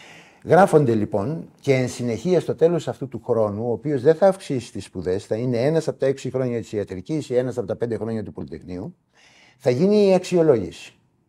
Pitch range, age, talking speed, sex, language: 110-145 Hz, 60-79, 200 wpm, male, Greek